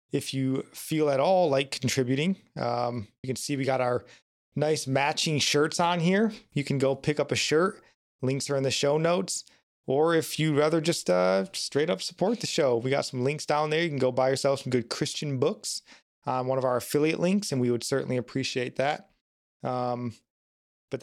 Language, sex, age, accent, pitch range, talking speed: English, male, 20-39, American, 125-155 Hz, 210 wpm